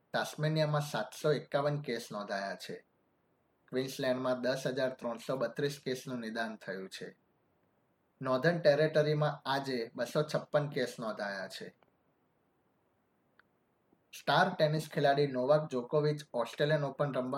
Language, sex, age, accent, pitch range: Gujarati, male, 20-39, native, 125-145 Hz